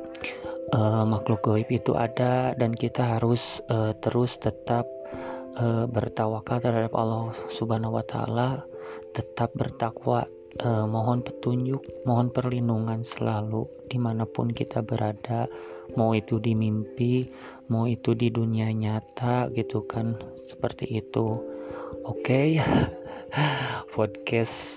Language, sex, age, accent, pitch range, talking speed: Indonesian, male, 30-49, native, 105-120 Hz, 110 wpm